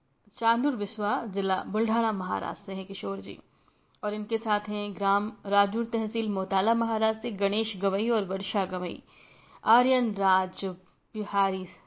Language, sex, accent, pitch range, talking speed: Hindi, female, native, 190-225 Hz, 135 wpm